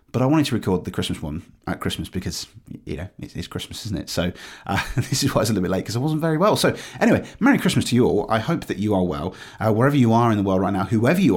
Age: 30-49